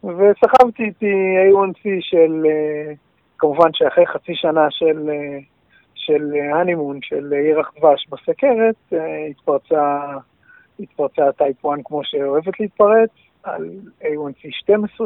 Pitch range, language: 145-205 Hz, Hebrew